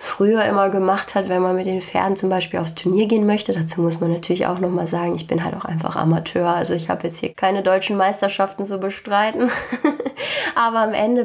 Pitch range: 180-195 Hz